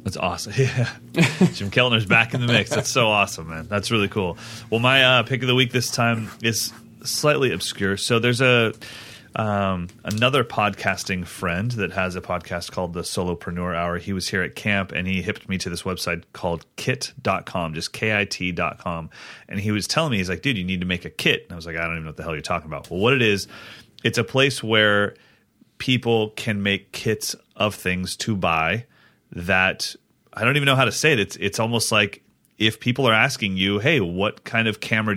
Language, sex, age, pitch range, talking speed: English, male, 30-49, 95-115 Hz, 215 wpm